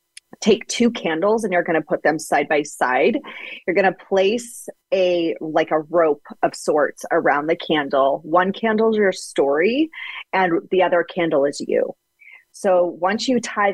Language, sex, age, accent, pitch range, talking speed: English, female, 30-49, American, 155-195 Hz, 175 wpm